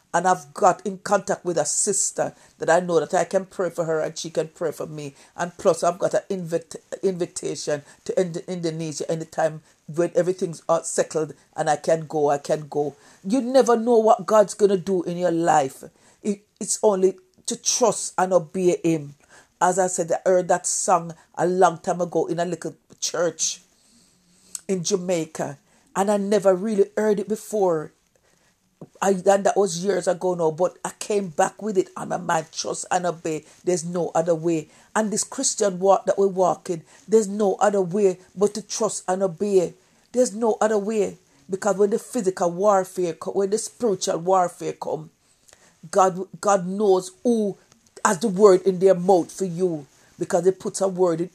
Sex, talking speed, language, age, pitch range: female, 185 wpm, English, 50-69, 170-200 Hz